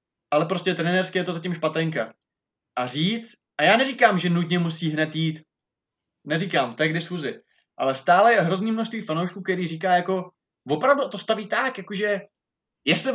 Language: Czech